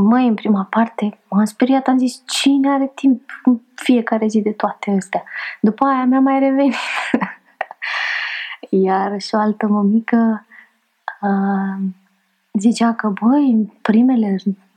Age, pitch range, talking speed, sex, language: 20-39, 215-270 Hz, 135 wpm, female, Romanian